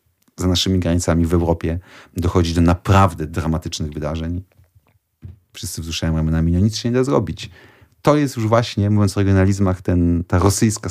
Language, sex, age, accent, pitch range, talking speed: Polish, male, 40-59, native, 90-105 Hz, 160 wpm